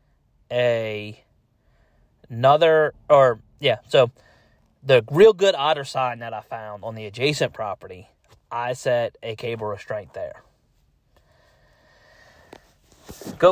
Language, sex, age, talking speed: English, male, 30-49, 105 wpm